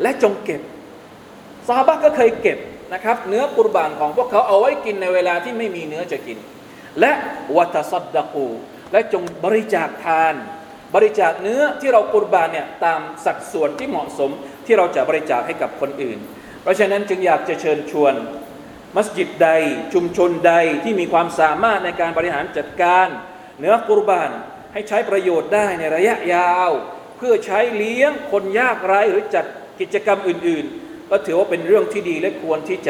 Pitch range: 170-225 Hz